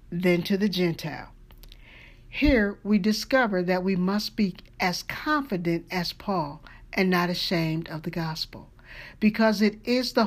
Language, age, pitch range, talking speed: English, 50-69, 170-215 Hz, 145 wpm